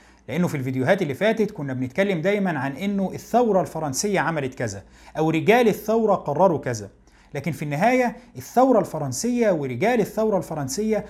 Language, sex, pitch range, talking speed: Arabic, male, 145-210 Hz, 145 wpm